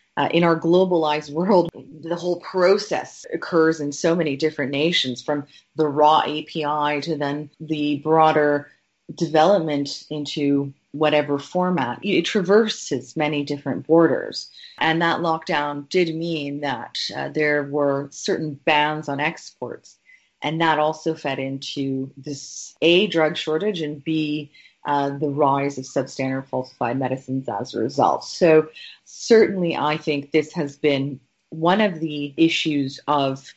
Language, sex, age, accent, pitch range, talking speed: English, female, 30-49, American, 140-165 Hz, 140 wpm